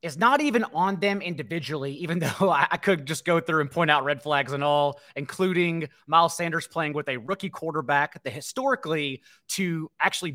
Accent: American